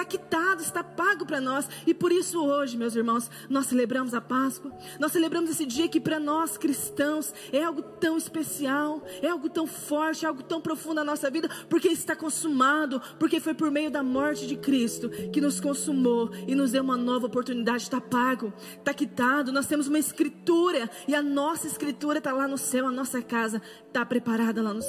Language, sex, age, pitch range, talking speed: Portuguese, female, 20-39, 260-310 Hz, 195 wpm